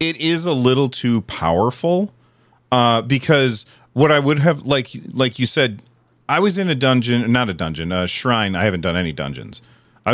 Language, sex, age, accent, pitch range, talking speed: English, male, 40-59, American, 105-130 Hz, 190 wpm